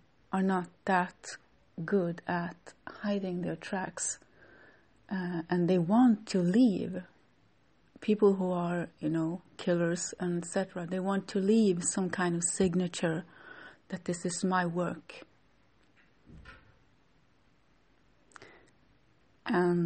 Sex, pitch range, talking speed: female, 175-200 Hz, 110 wpm